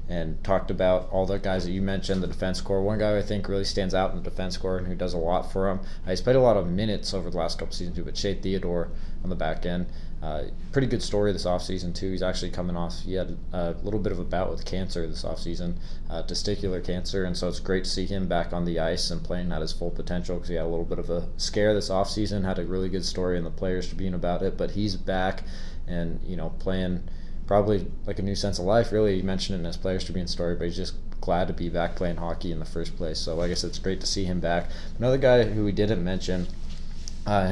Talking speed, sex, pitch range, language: 265 wpm, male, 85-95 Hz, English